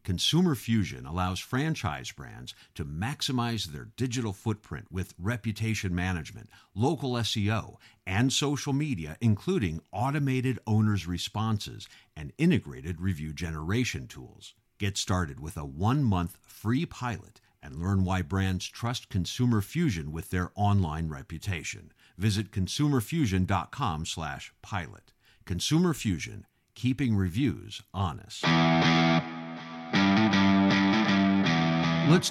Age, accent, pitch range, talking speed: 50-69, American, 90-115 Hz, 100 wpm